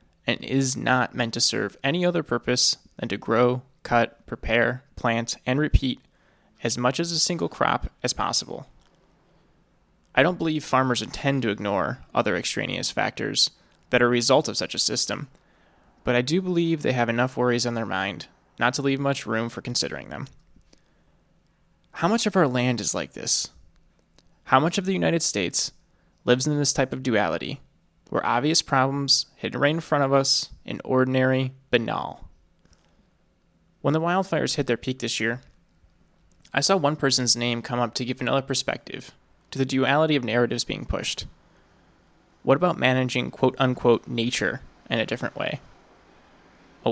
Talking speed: 165 wpm